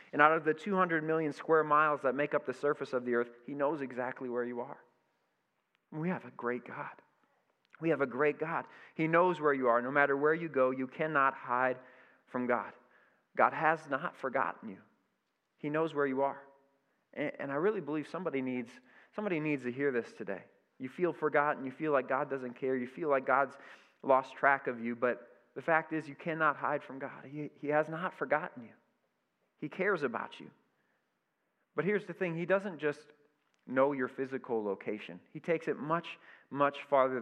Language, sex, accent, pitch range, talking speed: English, male, American, 125-160 Hz, 195 wpm